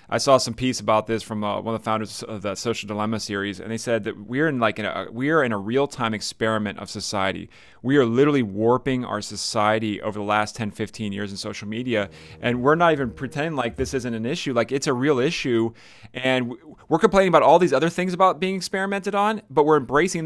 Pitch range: 110-145 Hz